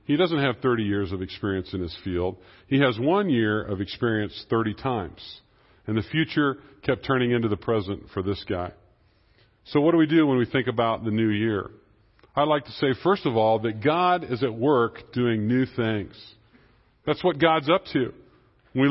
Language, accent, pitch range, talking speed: English, American, 115-150 Hz, 195 wpm